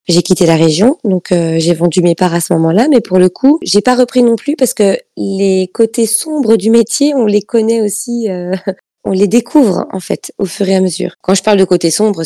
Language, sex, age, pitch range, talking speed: French, female, 20-39, 175-210 Hz, 245 wpm